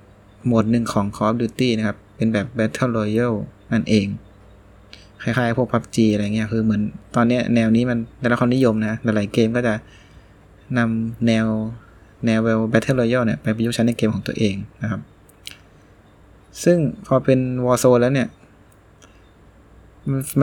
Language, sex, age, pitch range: Thai, male, 20-39, 105-125 Hz